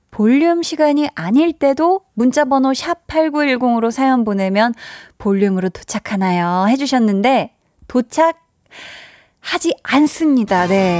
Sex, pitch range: female, 200-285 Hz